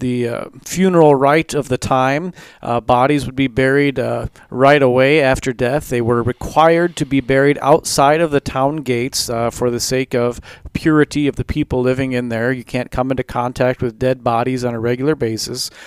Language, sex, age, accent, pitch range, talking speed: English, male, 40-59, American, 125-150 Hz, 195 wpm